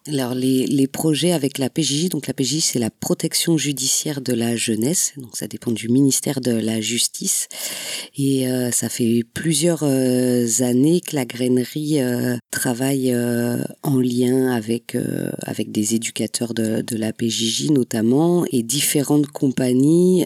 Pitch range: 115-135 Hz